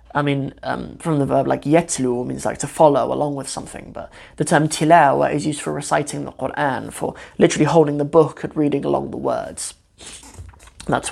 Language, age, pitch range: English, 20-39, 135-150 Hz